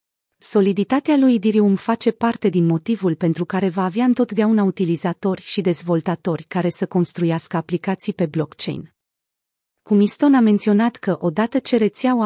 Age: 30-49